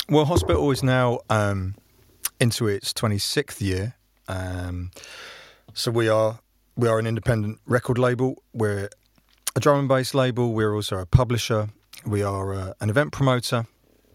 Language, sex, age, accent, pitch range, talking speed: English, male, 40-59, British, 105-125 Hz, 155 wpm